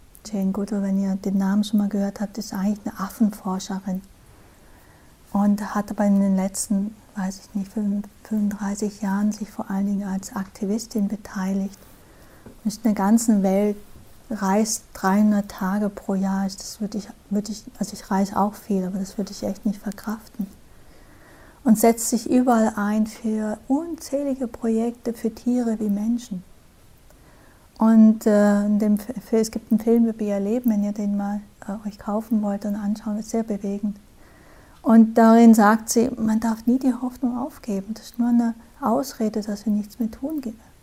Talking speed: 170 wpm